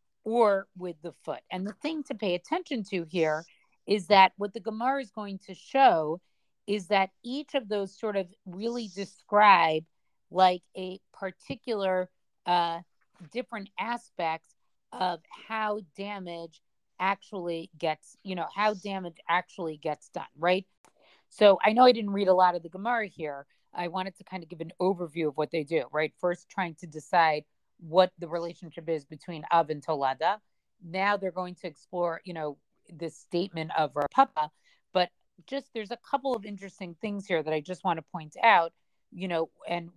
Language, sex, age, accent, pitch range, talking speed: English, female, 40-59, American, 165-200 Hz, 175 wpm